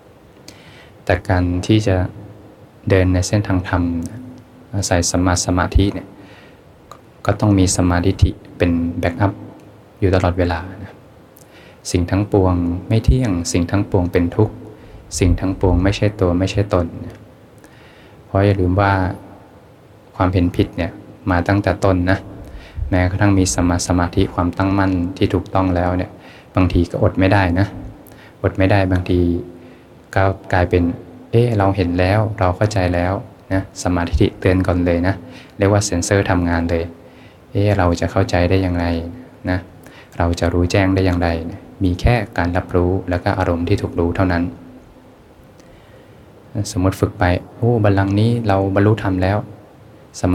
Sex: male